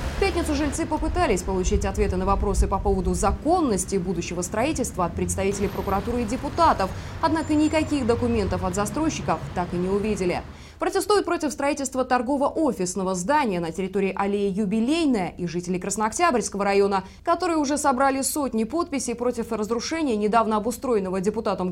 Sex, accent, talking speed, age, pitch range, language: female, native, 140 wpm, 20-39, 190-280 Hz, Russian